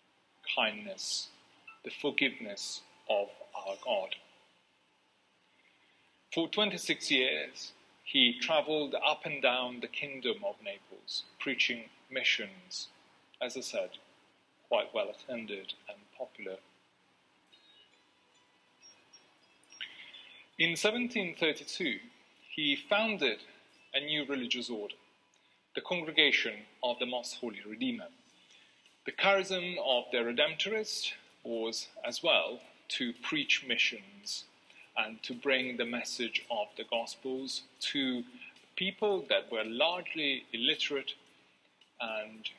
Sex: male